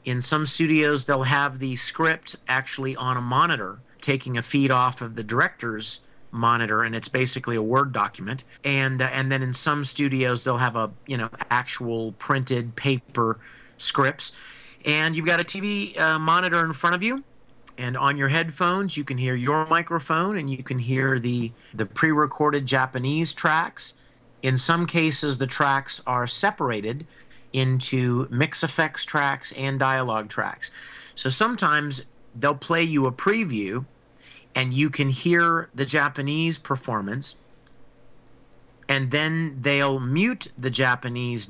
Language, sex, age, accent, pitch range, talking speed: English, male, 40-59, American, 125-150 Hz, 150 wpm